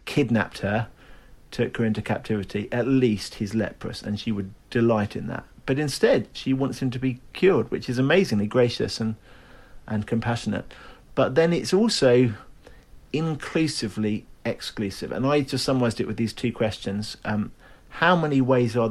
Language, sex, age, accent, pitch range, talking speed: English, male, 50-69, British, 105-130 Hz, 160 wpm